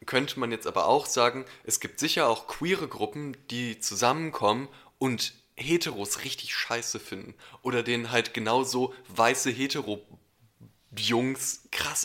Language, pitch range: German, 110-135 Hz